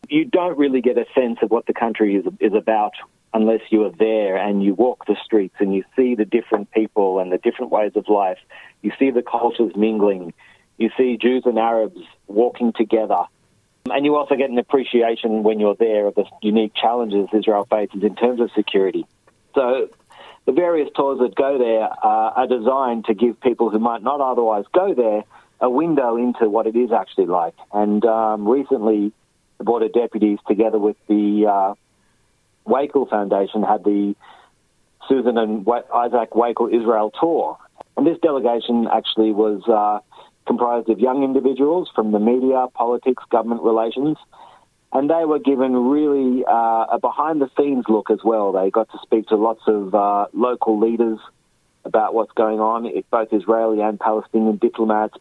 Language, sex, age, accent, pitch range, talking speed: Hebrew, male, 40-59, Australian, 105-125 Hz, 175 wpm